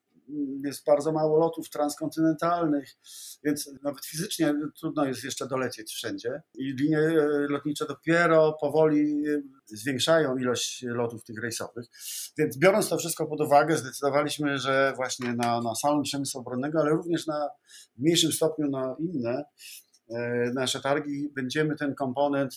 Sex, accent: male, native